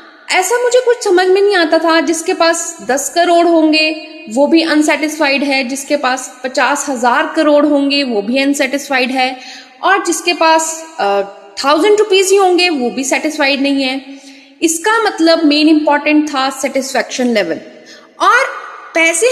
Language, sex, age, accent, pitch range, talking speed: Hindi, female, 20-39, native, 240-325 Hz, 150 wpm